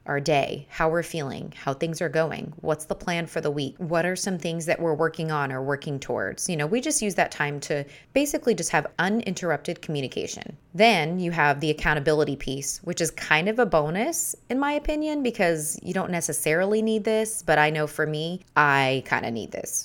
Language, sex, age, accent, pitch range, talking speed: English, female, 20-39, American, 145-180 Hz, 210 wpm